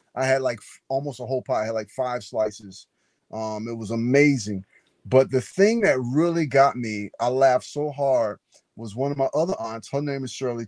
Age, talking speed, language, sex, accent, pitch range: 30-49, 215 wpm, English, male, American, 110-140 Hz